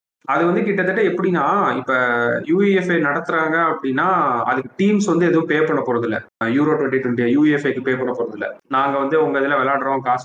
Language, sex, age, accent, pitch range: Tamil, male, 30-49, native, 125-175 Hz